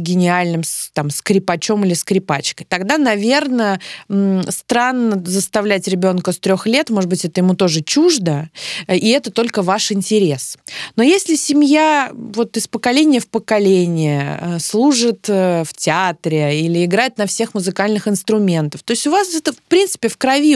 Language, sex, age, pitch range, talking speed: Russian, female, 20-39, 180-235 Hz, 145 wpm